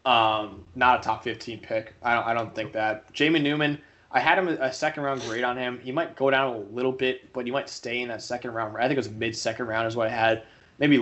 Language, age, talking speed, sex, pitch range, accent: English, 20-39, 255 wpm, male, 110-135 Hz, American